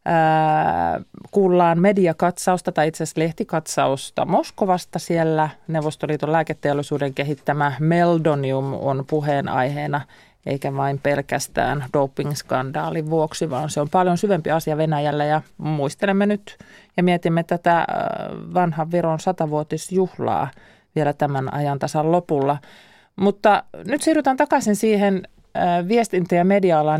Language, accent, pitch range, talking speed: Finnish, native, 145-180 Hz, 105 wpm